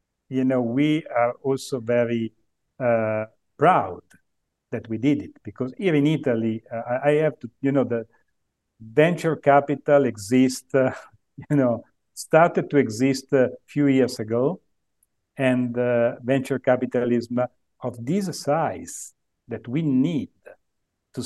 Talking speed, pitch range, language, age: 135 wpm, 115-145 Hz, English, 50-69